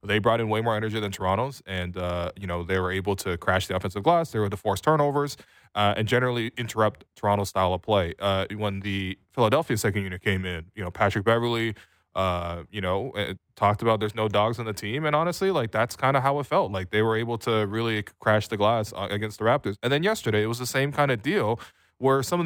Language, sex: English, male